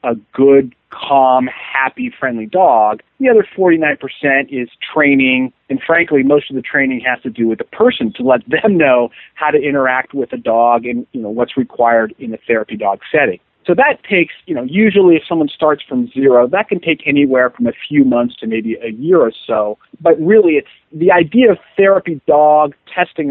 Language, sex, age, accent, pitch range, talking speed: English, male, 40-59, American, 125-170 Hz, 200 wpm